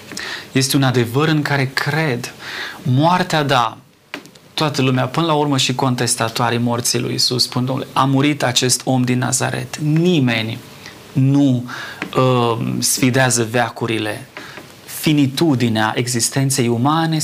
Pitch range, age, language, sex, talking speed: 120-155 Hz, 30-49, Romanian, male, 115 wpm